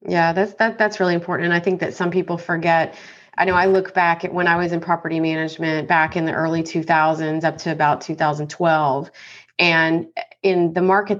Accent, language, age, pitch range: American, English, 30-49, 165-185 Hz